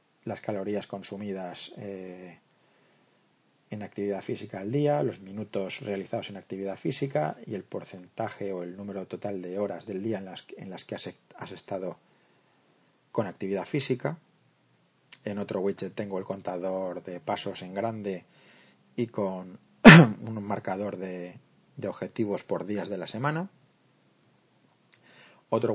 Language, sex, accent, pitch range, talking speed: Spanish, male, Spanish, 95-115 Hz, 130 wpm